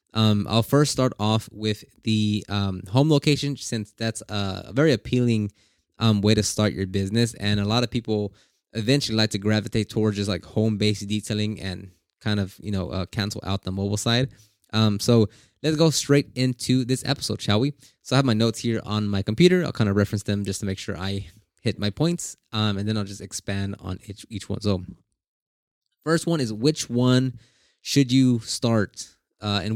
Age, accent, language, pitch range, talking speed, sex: 20-39, American, English, 105-135 Hz, 200 wpm, male